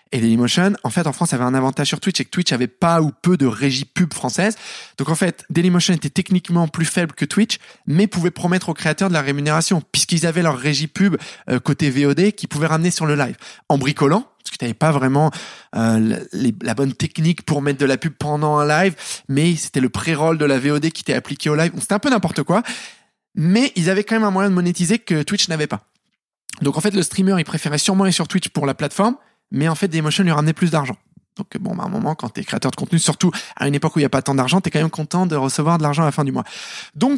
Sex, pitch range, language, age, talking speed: male, 145-190 Hz, French, 20-39, 265 wpm